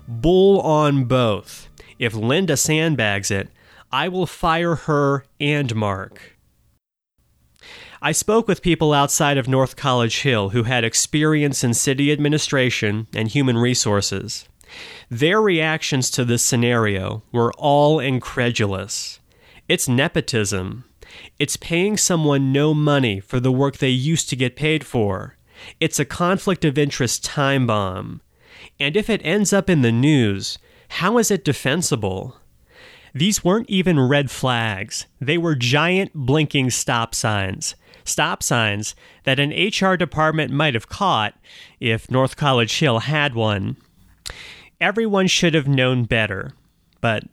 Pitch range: 115-155 Hz